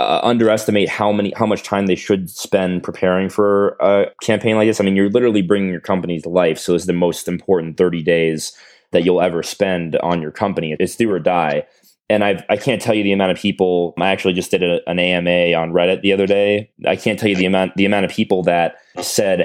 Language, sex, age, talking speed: English, male, 20-39, 240 wpm